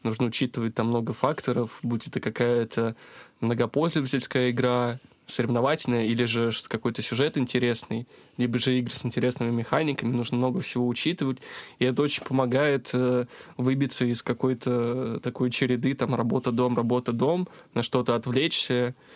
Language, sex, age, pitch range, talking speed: Russian, male, 20-39, 120-130 Hz, 130 wpm